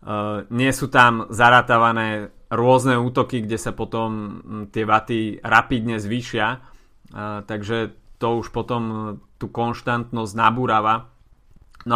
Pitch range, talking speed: 105-120 Hz, 115 wpm